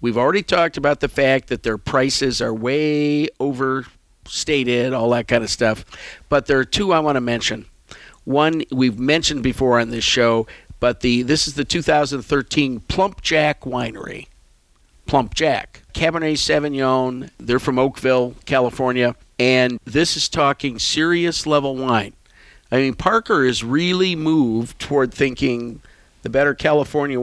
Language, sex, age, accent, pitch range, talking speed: English, male, 50-69, American, 120-150 Hz, 150 wpm